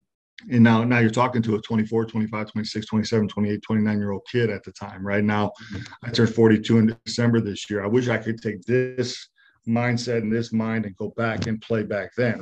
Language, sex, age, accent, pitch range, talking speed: English, male, 40-59, American, 110-125 Hz, 210 wpm